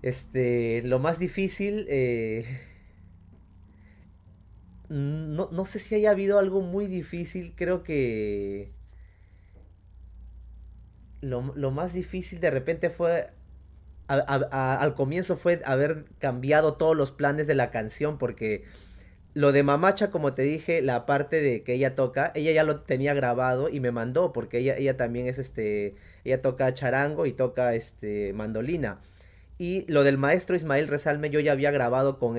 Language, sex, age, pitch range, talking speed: Spanish, male, 30-49, 100-150 Hz, 145 wpm